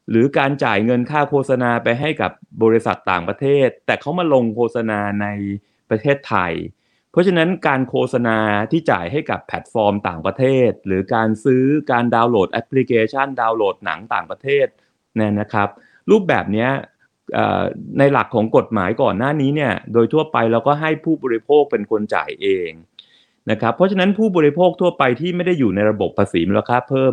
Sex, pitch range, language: male, 105-140 Hz, Thai